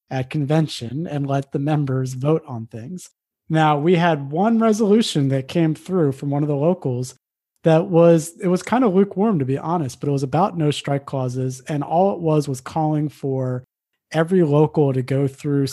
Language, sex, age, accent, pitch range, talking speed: English, male, 30-49, American, 130-165 Hz, 195 wpm